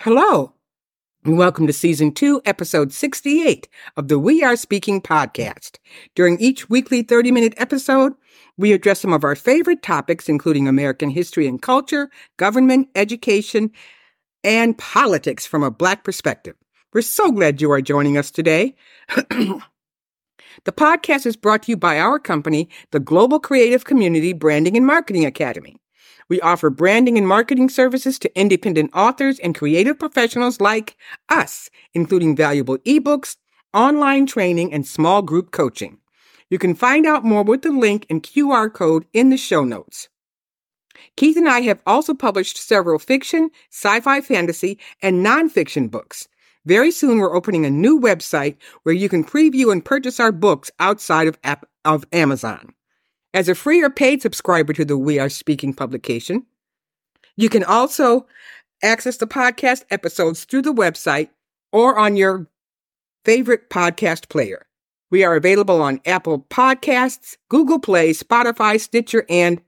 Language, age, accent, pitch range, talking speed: English, 60-79, American, 165-255 Hz, 150 wpm